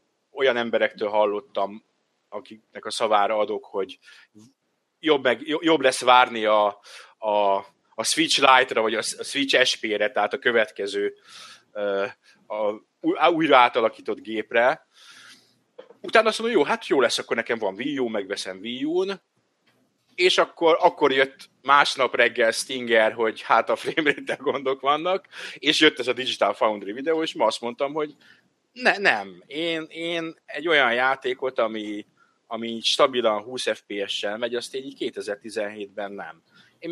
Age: 30-49